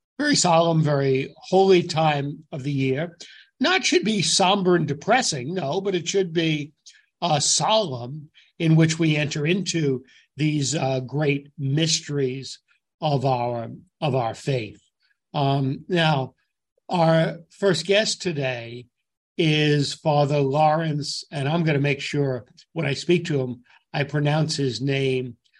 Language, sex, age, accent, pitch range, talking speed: English, male, 60-79, American, 135-165 Hz, 135 wpm